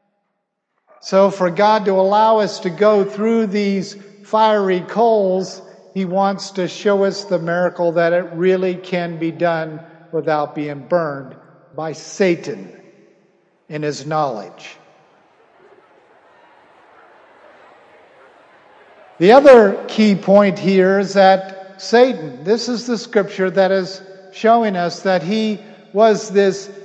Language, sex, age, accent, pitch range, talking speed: English, male, 50-69, American, 175-215 Hz, 120 wpm